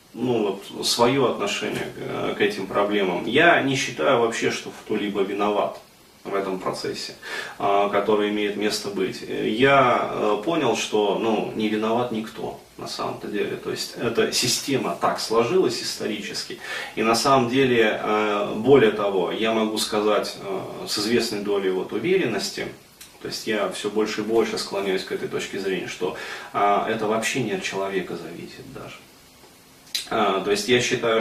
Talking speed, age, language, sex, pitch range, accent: 145 wpm, 30-49, Russian, male, 105-125 Hz, native